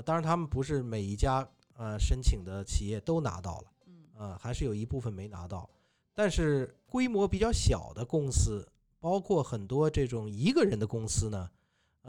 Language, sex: Chinese, male